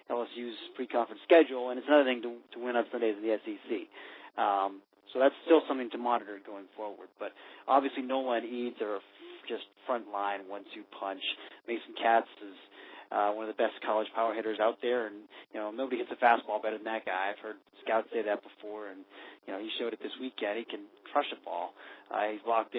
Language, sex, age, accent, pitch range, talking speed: English, male, 30-49, American, 105-130 Hz, 210 wpm